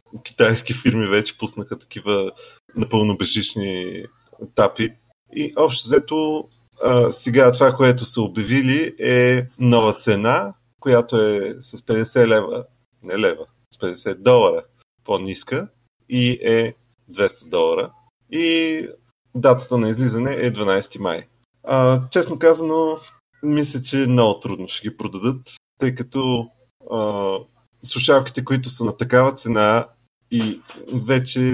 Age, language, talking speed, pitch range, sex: 30-49, Bulgarian, 120 wpm, 105-125 Hz, male